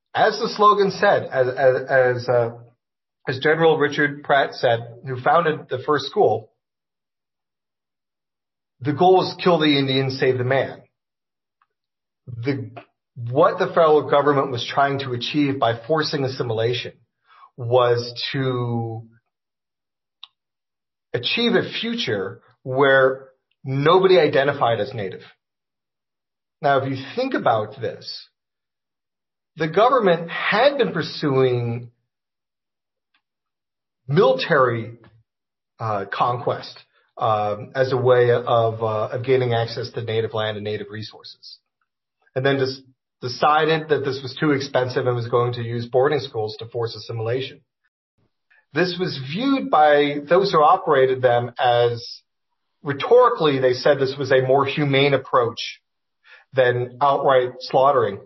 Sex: male